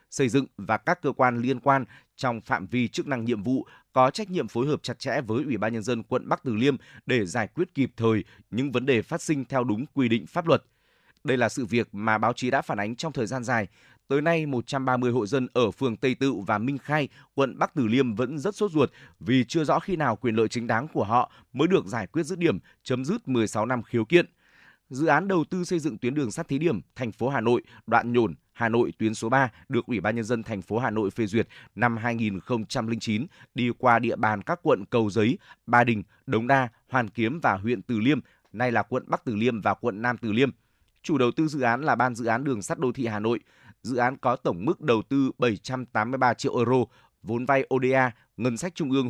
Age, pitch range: 20-39, 115-135 Hz